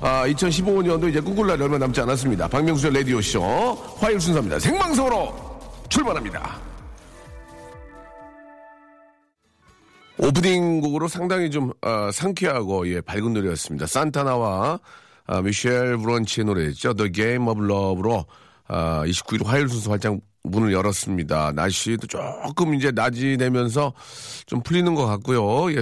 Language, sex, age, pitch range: Korean, male, 40-59, 100-145 Hz